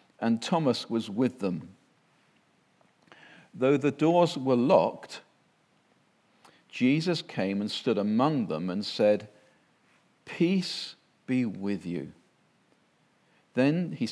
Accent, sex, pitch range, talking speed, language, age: British, male, 100-155 Hz, 100 wpm, English, 50-69